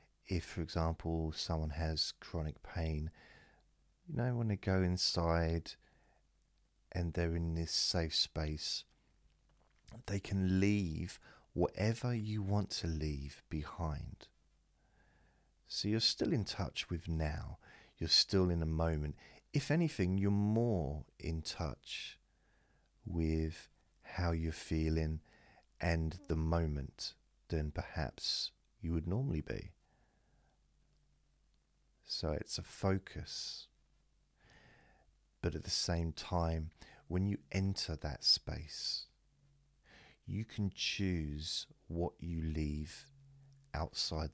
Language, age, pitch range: English, 40-59, 80-100 Hz